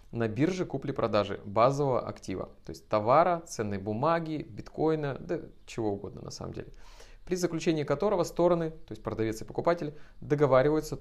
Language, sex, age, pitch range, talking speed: Russian, male, 20-39, 110-160 Hz, 145 wpm